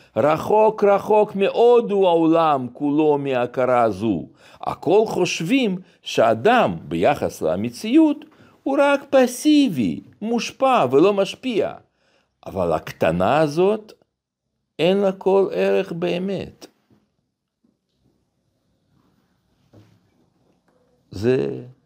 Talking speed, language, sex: 75 wpm, Hebrew, male